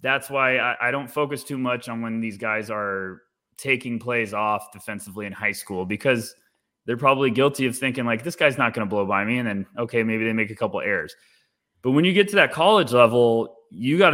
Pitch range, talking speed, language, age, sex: 105-130 Hz, 230 wpm, English, 20-39, male